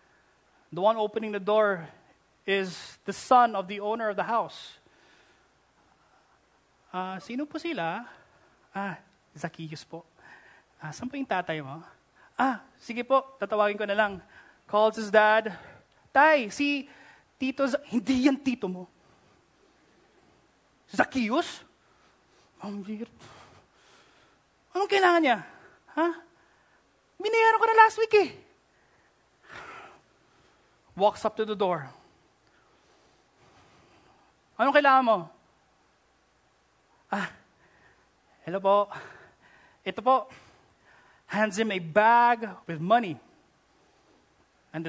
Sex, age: male, 20-39